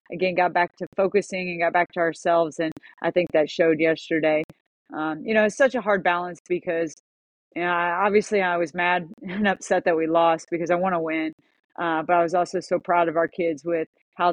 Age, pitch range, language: 40-59, 165-180 Hz, English